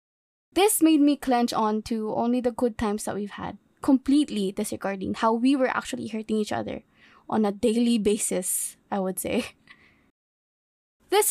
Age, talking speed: 20-39, 160 wpm